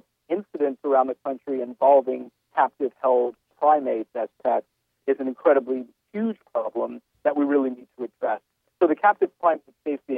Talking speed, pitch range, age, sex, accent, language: 140 wpm, 130-160 Hz, 50-69, male, American, English